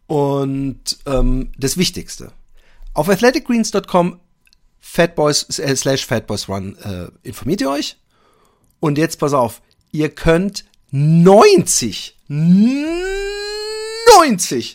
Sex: male